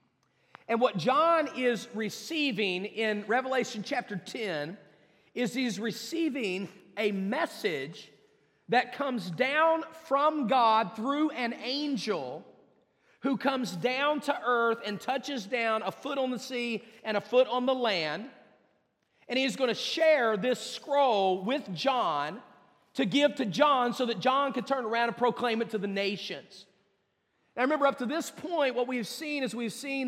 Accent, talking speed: American, 155 wpm